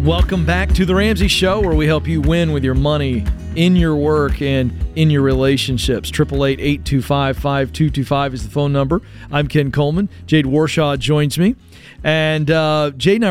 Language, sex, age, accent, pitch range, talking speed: English, male, 40-59, American, 140-180 Hz, 165 wpm